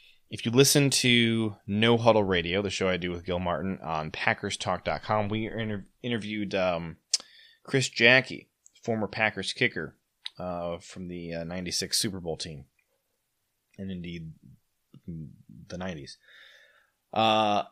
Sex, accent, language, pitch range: male, American, English, 95-120 Hz